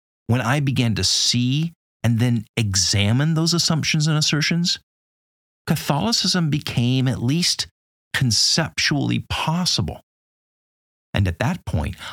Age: 50-69